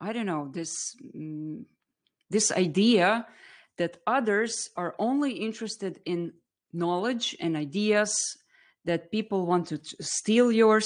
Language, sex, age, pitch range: English, female, 30-49, 170-240 Hz